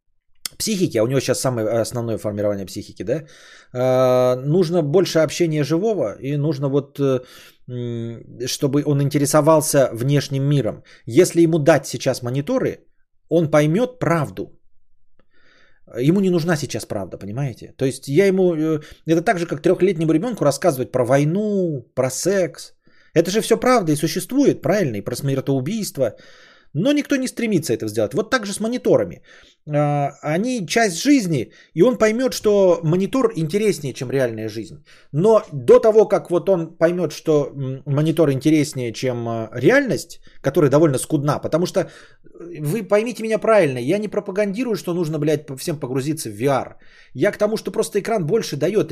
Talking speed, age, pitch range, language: 150 wpm, 20-39, 135-195 Hz, Bulgarian